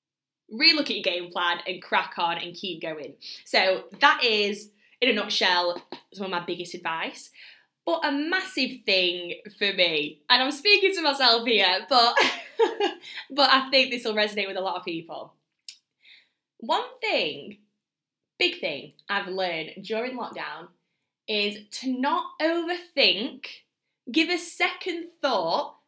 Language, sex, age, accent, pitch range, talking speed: English, female, 20-39, British, 190-290 Hz, 145 wpm